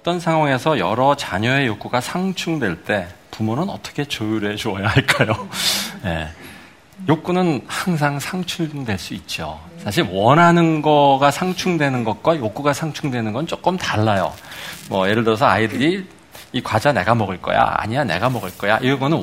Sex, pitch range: male, 110-165 Hz